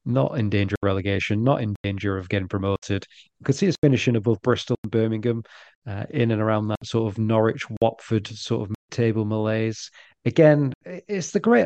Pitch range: 100-130 Hz